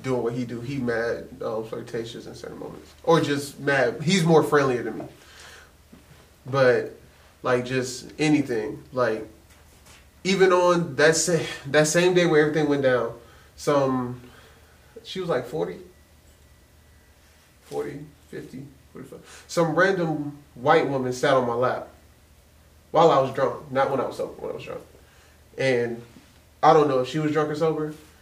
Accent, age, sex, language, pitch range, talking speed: American, 20-39, male, English, 115-155 Hz, 155 wpm